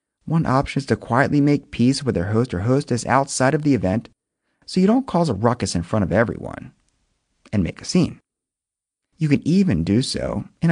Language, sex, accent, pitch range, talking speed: English, male, American, 105-155 Hz, 200 wpm